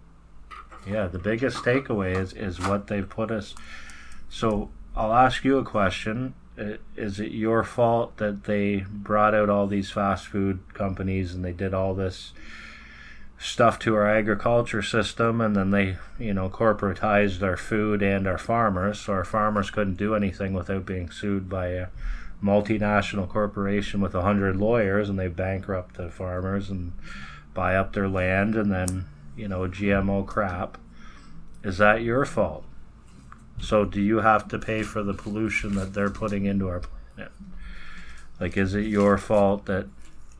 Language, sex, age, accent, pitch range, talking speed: English, male, 20-39, American, 95-110 Hz, 160 wpm